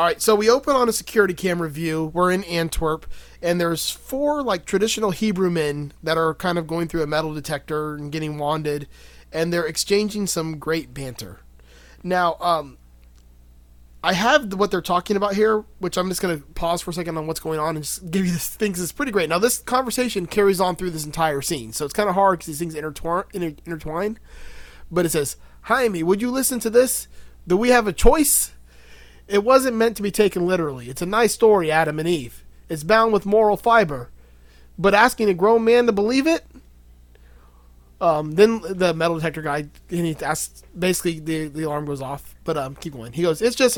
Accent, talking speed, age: American, 205 wpm, 30-49